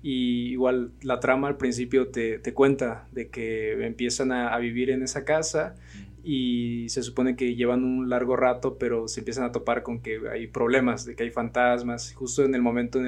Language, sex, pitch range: Spanish, male, 120-140 Hz